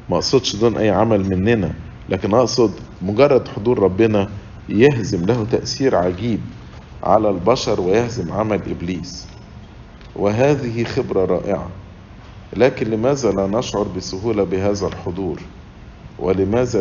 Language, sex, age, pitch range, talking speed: English, male, 50-69, 95-120 Hz, 110 wpm